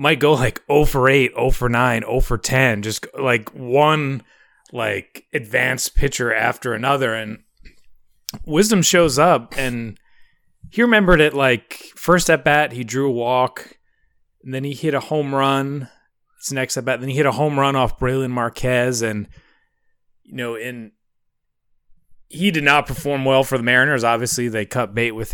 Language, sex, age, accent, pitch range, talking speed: English, male, 30-49, American, 110-140 Hz, 175 wpm